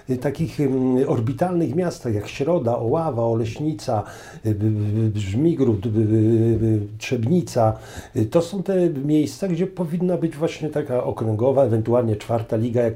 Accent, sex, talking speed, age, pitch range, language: native, male, 145 wpm, 50-69, 110-125 Hz, Polish